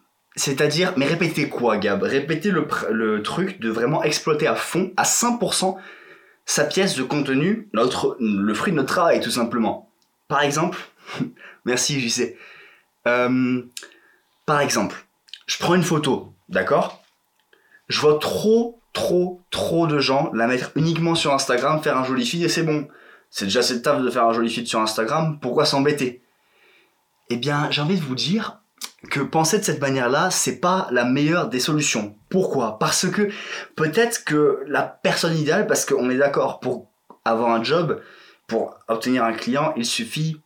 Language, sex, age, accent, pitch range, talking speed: French, male, 20-39, French, 130-205 Hz, 165 wpm